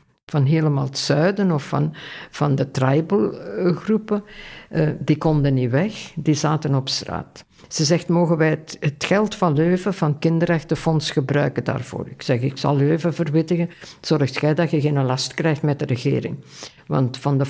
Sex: female